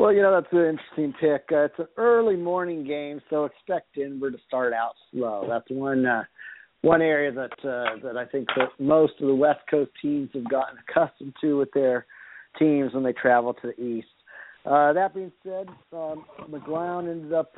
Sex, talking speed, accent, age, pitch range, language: male, 200 wpm, American, 50-69, 130-160 Hz, English